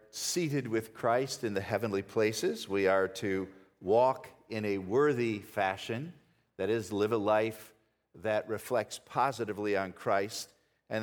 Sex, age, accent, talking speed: male, 50-69, American, 140 wpm